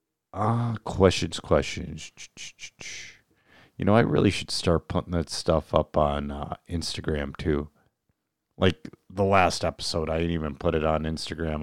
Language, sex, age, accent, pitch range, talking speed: English, male, 40-59, American, 80-100 Hz, 150 wpm